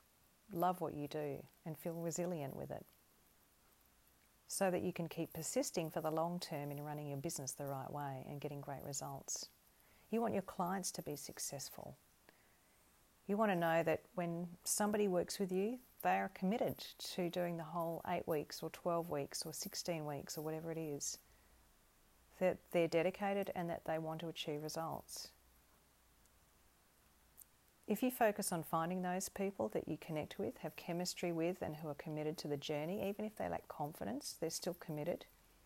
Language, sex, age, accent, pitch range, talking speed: English, female, 40-59, Australian, 150-185 Hz, 175 wpm